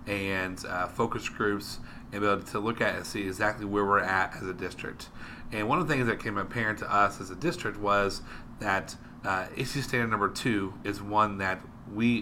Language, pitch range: English, 100-115 Hz